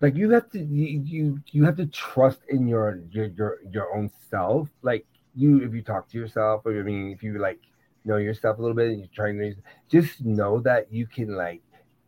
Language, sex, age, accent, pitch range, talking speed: English, male, 30-49, American, 105-140 Hz, 225 wpm